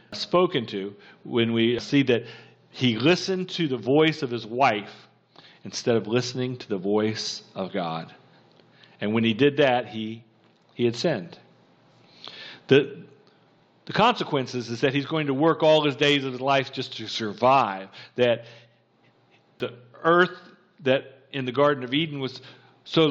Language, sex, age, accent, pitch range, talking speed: English, male, 50-69, American, 115-155 Hz, 155 wpm